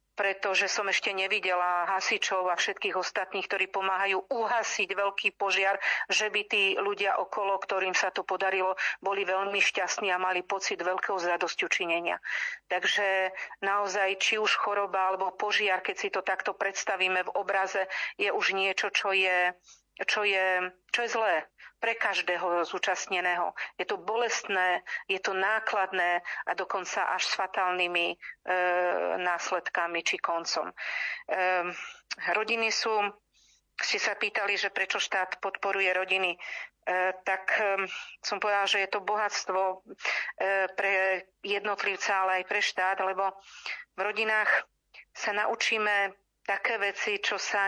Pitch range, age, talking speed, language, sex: 185-205 Hz, 40-59, 135 wpm, Slovak, female